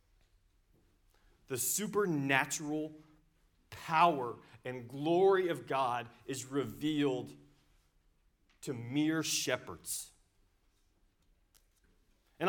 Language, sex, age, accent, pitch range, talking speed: English, male, 40-59, American, 110-170 Hz, 60 wpm